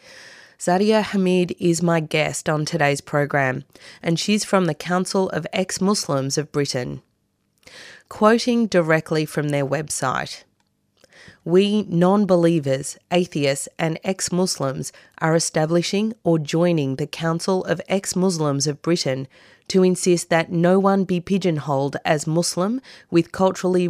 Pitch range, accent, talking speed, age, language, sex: 150-185 Hz, Australian, 120 wpm, 30-49, English, female